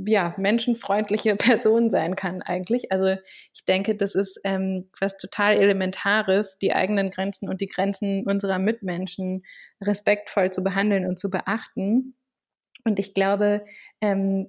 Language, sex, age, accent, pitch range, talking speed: German, female, 20-39, German, 190-215 Hz, 135 wpm